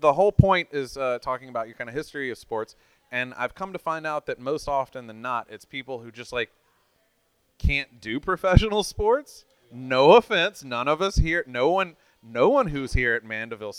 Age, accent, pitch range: 30-49, American, 115-165 Hz